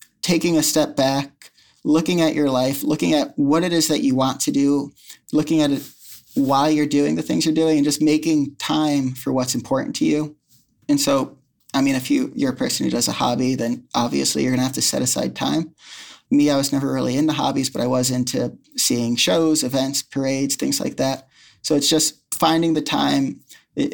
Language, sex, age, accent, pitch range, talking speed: English, male, 30-49, American, 130-150 Hz, 210 wpm